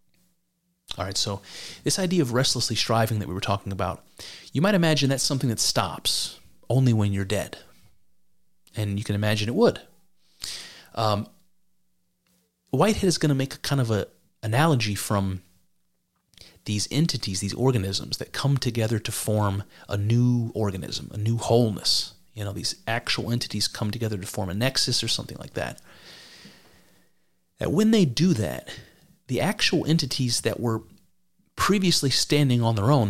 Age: 30-49